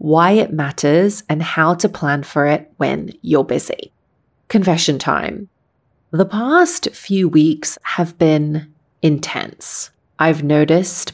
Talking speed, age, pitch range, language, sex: 125 wpm, 30-49, 155-180 Hz, English, female